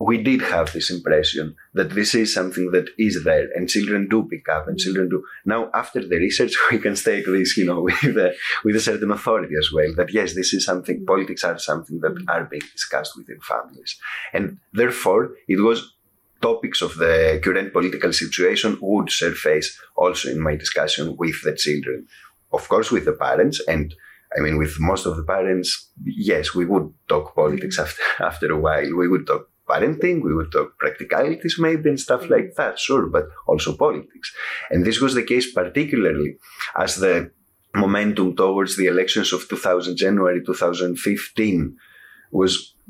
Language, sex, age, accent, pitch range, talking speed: English, male, 30-49, Spanish, 90-115 Hz, 175 wpm